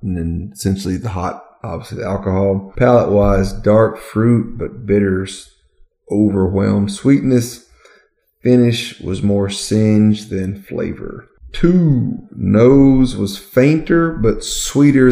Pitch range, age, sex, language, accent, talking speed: 95-120 Hz, 30-49, male, English, American, 105 wpm